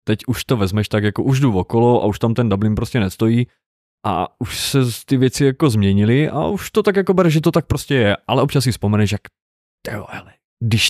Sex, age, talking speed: male, 20-39, 230 wpm